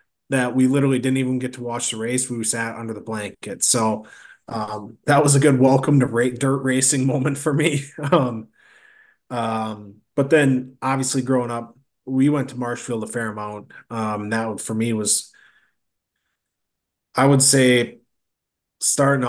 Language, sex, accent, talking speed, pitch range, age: English, male, American, 165 wpm, 110-130 Hz, 20-39